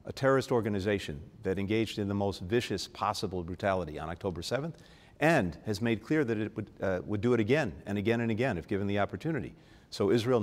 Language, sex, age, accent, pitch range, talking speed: English, male, 50-69, American, 95-115 Hz, 205 wpm